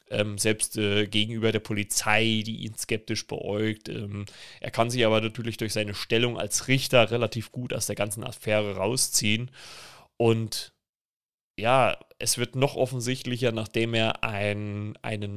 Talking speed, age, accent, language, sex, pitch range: 150 wpm, 30-49, German, German, male, 105-120 Hz